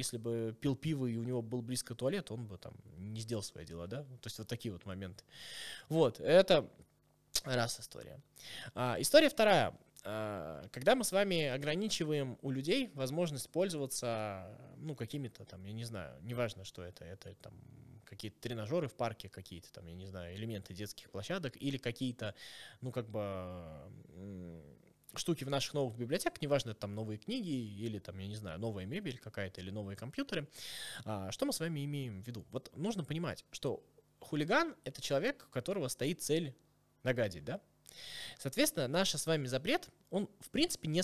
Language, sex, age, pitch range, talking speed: Russian, male, 20-39, 105-145 Hz, 170 wpm